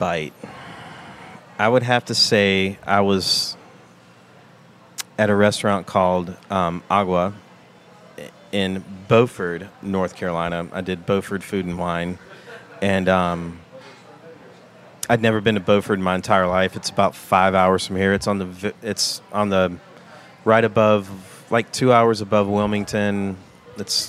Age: 30-49